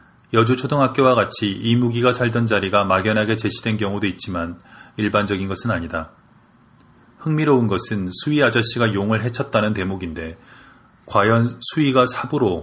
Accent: native